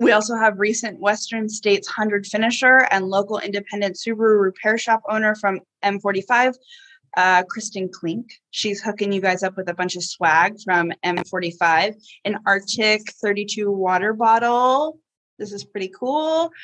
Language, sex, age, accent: English, female, 20-39, American